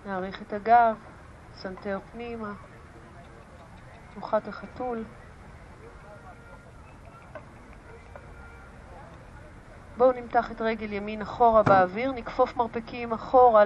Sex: female